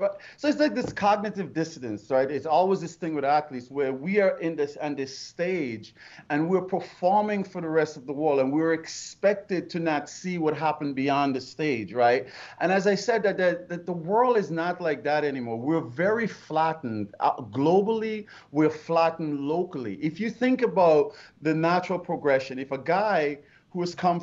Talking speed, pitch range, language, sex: 190 wpm, 145-185 Hz, English, male